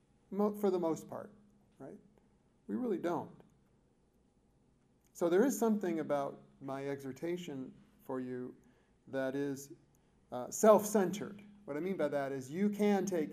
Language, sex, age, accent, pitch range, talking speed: English, male, 40-59, American, 130-155 Hz, 135 wpm